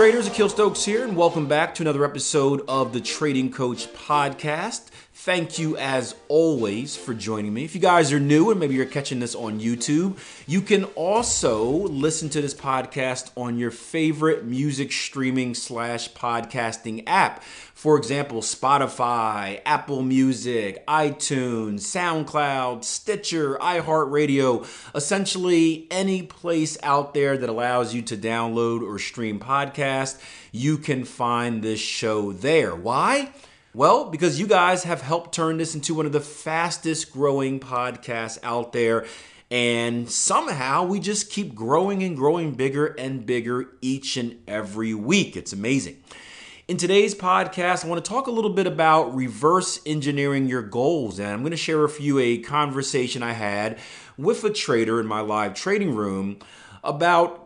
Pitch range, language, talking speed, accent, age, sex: 120-165 Hz, English, 155 wpm, American, 30-49, male